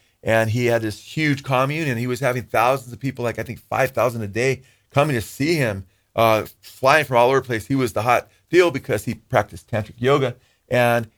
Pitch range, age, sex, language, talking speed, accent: 110-140 Hz, 40-59, male, English, 220 wpm, American